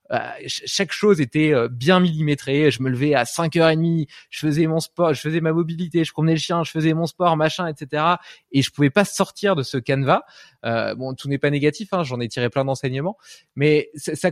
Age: 20-39